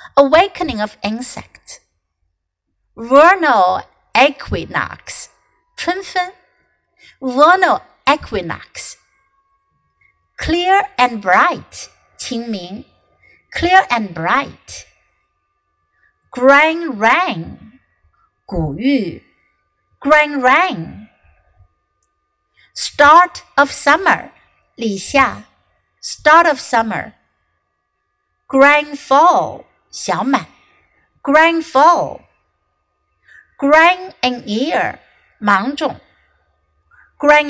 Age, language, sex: 50-69, Chinese, female